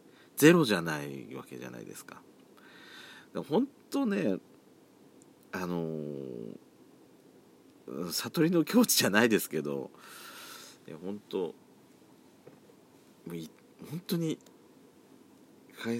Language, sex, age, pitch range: Japanese, male, 40-59, 90-125 Hz